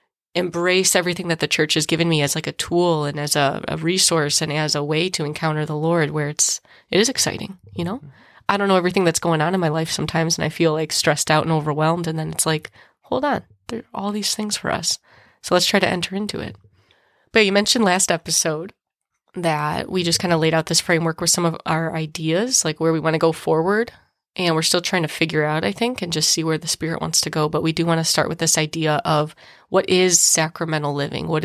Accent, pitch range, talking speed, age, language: American, 155-175 Hz, 250 wpm, 20-39, English